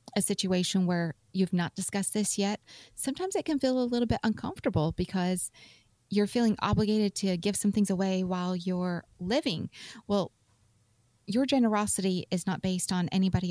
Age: 30-49